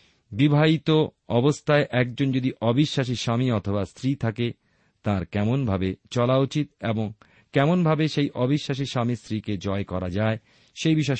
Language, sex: Bengali, male